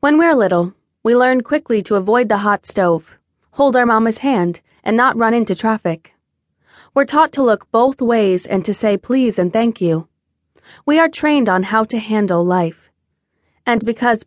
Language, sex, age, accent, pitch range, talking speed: English, female, 20-39, American, 185-245 Hz, 180 wpm